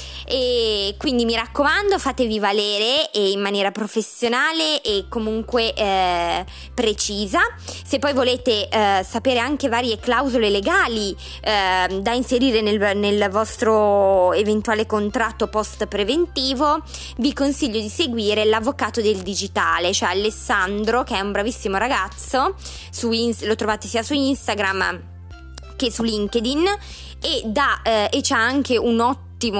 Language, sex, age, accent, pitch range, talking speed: Italian, female, 20-39, native, 205-255 Hz, 130 wpm